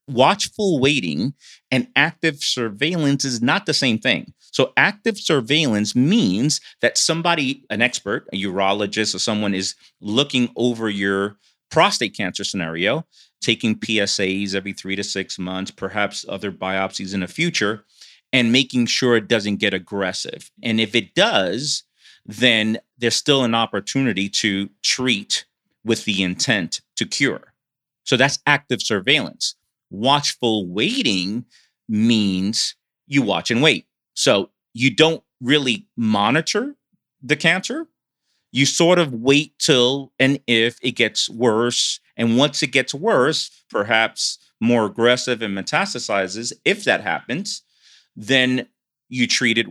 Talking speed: 135 wpm